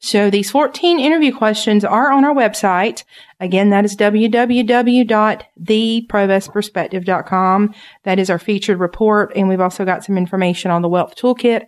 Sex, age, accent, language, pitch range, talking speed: female, 40-59, American, English, 185-240 Hz, 145 wpm